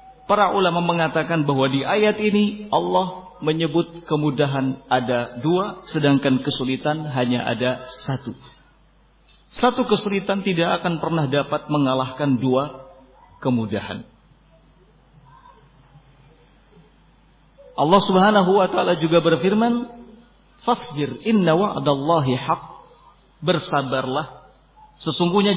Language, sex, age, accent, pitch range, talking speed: Indonesian, male, 50-69, native, 160-210 Hz, 90 wpm